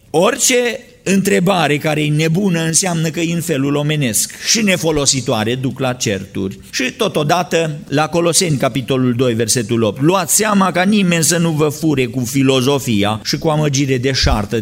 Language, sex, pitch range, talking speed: Romanian, male, 120-155 Hz, 160 wpm